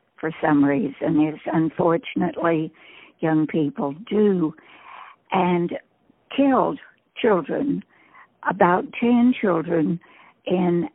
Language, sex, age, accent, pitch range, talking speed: English, female, 60-79, American, 160-205 Hz, 80 wpm